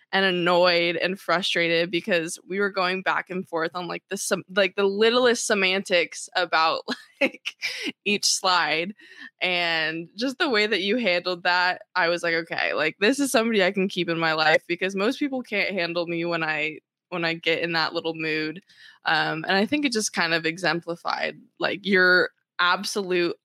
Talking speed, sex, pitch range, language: 185 wpm, female, 165-195 Hz, English